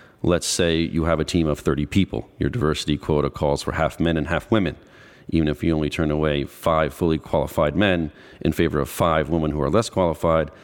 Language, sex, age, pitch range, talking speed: English, male, 40-59, 80-95 Hz, 215 wpm